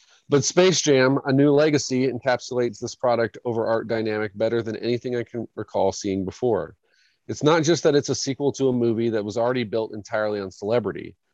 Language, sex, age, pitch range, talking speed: English, male, 30-49, 110-130 Hz, 195 wpm